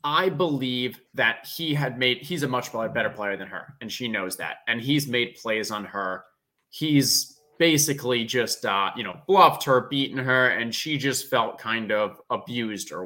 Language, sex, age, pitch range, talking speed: English, male, 20-39, 125-165 Hz, 190 wpm